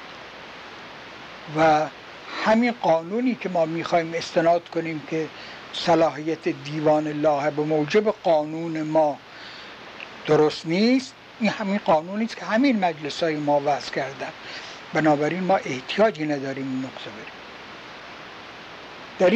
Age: 60-79